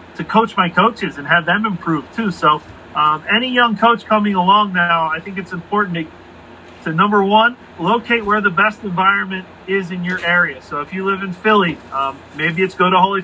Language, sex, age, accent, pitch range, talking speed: English, male, 30-49, American, 170-205 Hz, 210 wpm